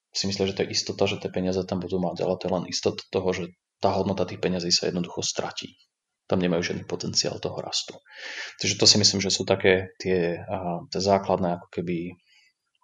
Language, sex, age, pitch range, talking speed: Slovak, male, 30-49, 90-105 Hz, 200 wpm